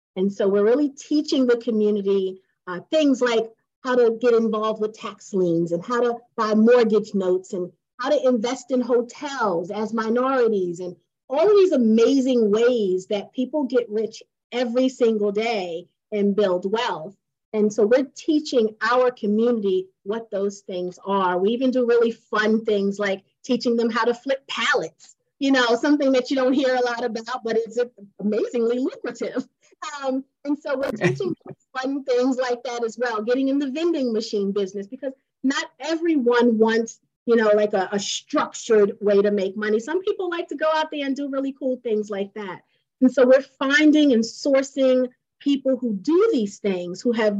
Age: 30-49